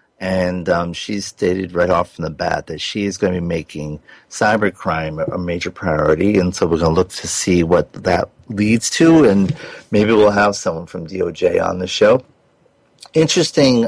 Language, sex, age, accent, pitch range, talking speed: English, male, 50-69, American, 85-110 Hz, 185 wpm